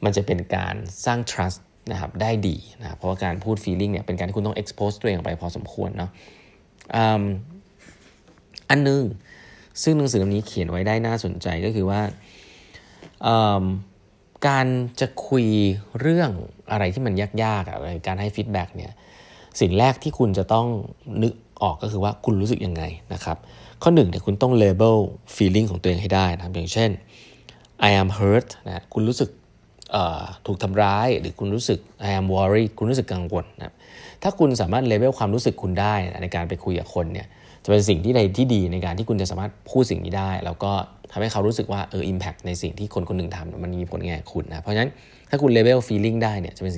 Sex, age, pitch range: male, 20-39, 90-110 Hz